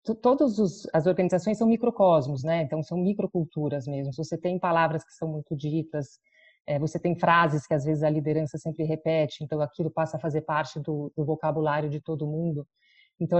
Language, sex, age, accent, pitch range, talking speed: Portuguese, female, 30-49, Brazilian, 155-195 Hz, 185 wpm